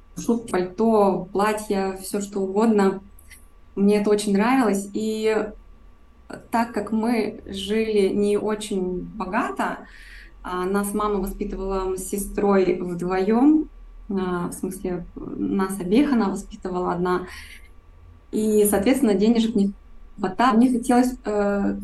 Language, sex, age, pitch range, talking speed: Russian, female, 20-39, 185-215 Hz, 105 wpm